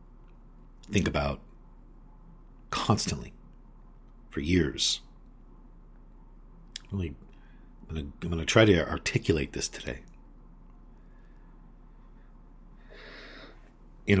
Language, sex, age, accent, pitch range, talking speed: English, male, 50-69, American, 80-105 Hz, 60 wpm